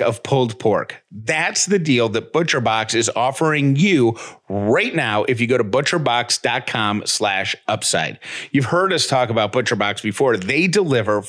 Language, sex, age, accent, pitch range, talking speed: English, male, 40-59, American, 115-150 Hz, 150 wpm